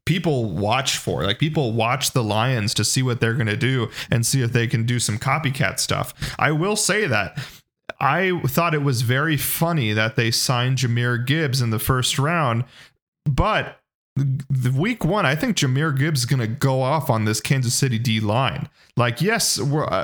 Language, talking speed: English, 195 wpm